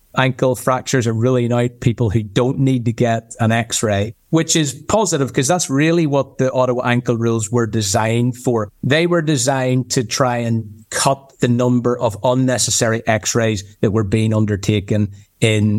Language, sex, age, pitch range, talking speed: English, male, 30-49, 115-135 Hz, 165 wpm